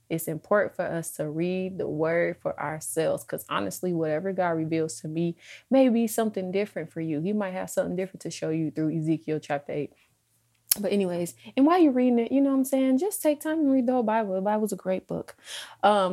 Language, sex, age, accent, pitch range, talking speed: English, female, 20-39, American, 160-195 Hz, 230 wpm